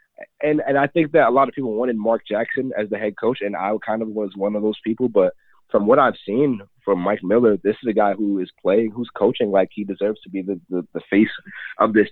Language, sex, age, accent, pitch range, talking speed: English, male, 30-49, American, 100-120 Hz, 260 wpm